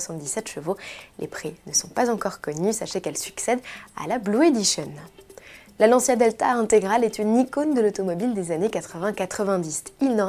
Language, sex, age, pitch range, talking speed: French, female, 20-39, 180-255 Hz, 175 wpm